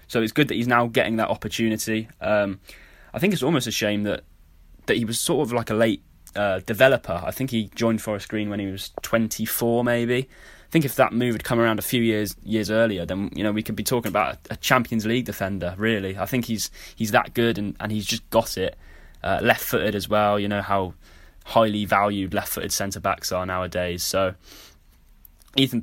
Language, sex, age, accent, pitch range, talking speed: English, male, 10-29, British, 95-110 Hz, 215 wpm